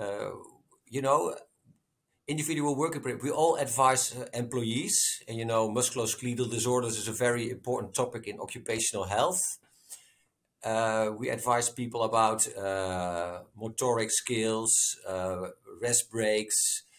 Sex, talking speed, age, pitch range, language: male, 115 wpm, 50-69, 110-135 Hz, English